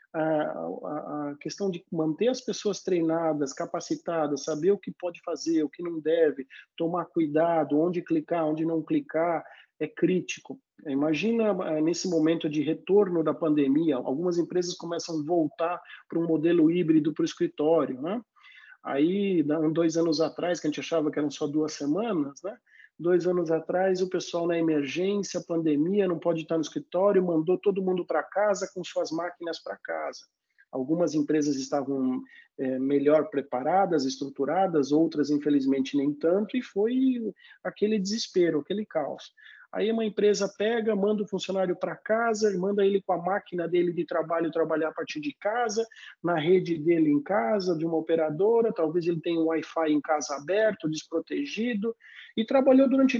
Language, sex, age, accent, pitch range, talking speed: Portuguese, male, 40-59, Brazilian, 155-200 Hz, 160 wpm